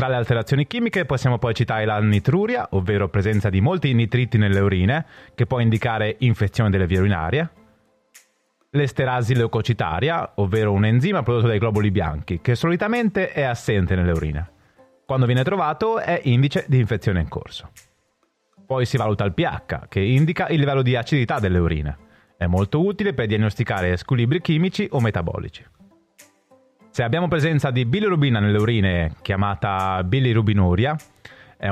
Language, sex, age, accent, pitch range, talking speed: Italian, male, 30-49, native, 100-150 Hz, 150 wpm